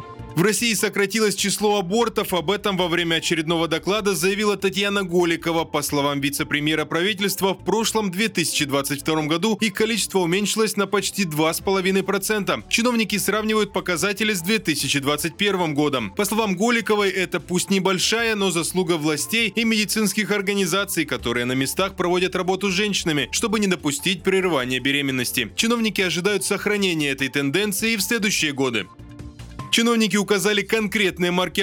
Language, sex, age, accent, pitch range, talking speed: Russian, male, 20-39, native, 170-210 Hz, 135 wpm